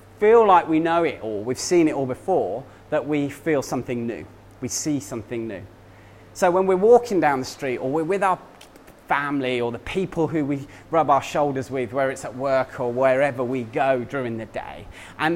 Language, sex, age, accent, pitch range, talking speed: English, male, 30-49, British, 125-185 Hz, 205 wpm